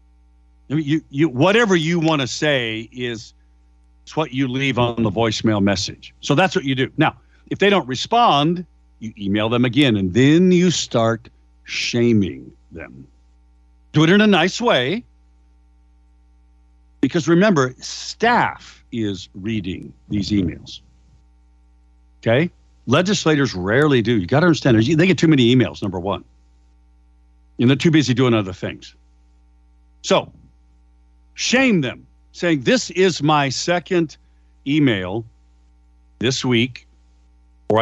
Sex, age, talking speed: male, 60-79, 130 wpm